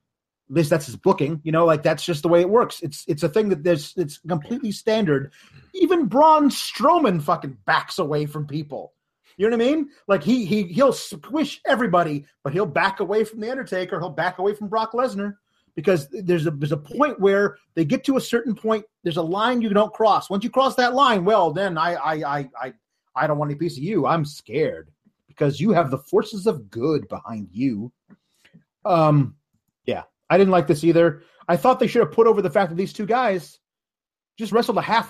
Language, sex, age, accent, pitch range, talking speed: English, male, 30-49, American, 165-230 Hz, 215 wpm